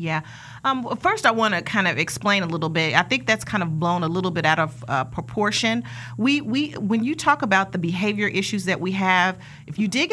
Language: English